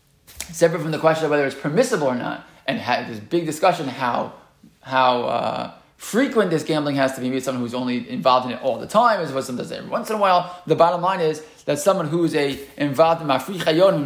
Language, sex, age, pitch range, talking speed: English, male, 20-39, 140-175 Hz, 235 wpm